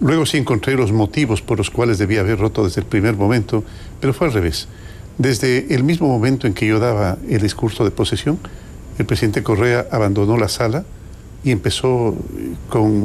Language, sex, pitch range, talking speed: Spanish, male, 100-125 Hz, 185 wpm